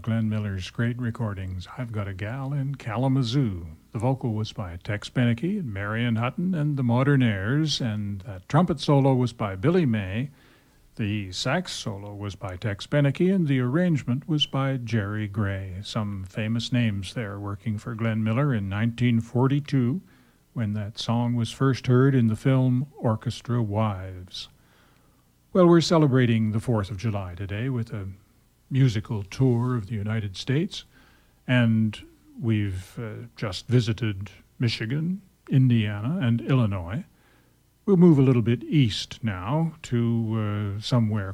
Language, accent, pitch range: English, American, 105-130 Hz